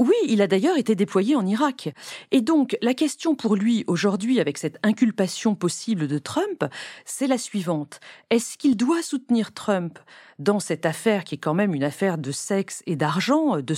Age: 40-59